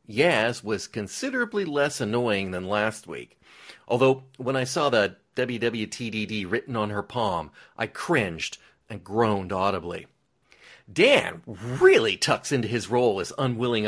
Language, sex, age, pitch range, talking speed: English, male, 40-59, 110-160 Hz, 135 wpm